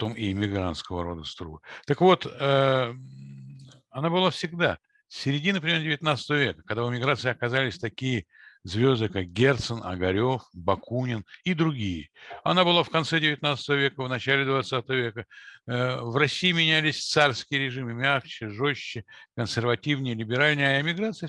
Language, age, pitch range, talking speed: Russian, 60-79, 100-140 Hz, 135 wpm